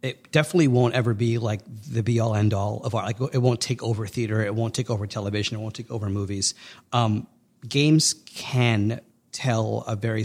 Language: English